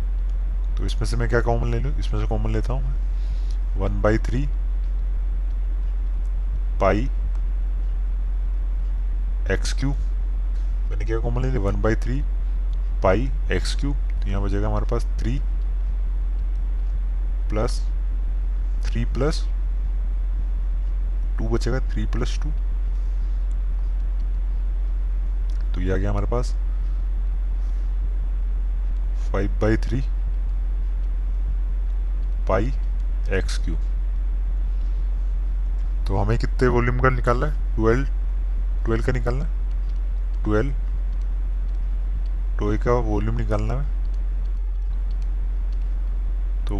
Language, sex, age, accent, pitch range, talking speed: Hindi, male, 20-39, native, 65-105 Hz, 75 wpm